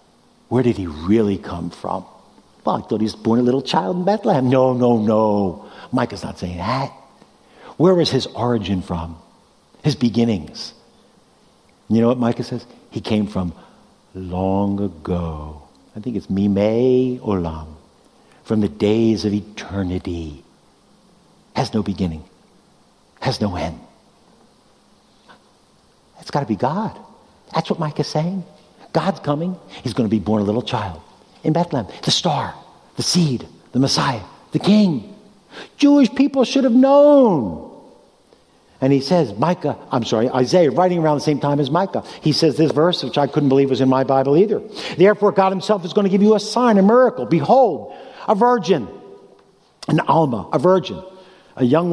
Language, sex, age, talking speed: English, male, 60-79, 160 wpm